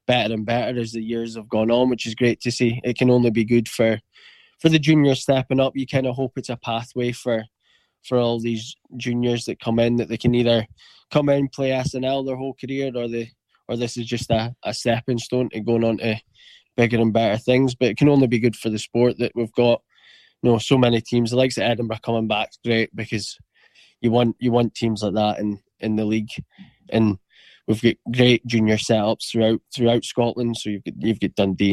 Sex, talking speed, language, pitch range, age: male, 225 wpm, English, 115-130 Hz, 10-29